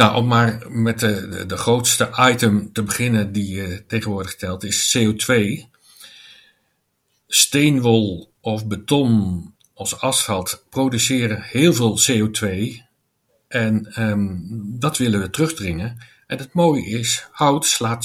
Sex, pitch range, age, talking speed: male, 105-130 Hz, 50-69, 115 wpm